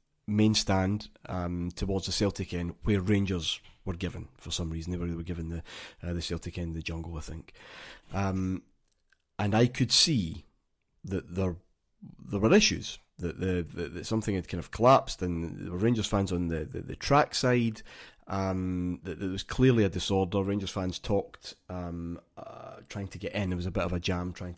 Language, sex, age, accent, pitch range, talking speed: English, male, 30-49, British, 85-100 Hz, 200 wpm